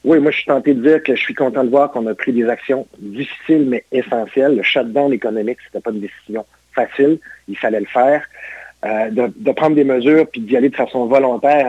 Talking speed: 235 wpm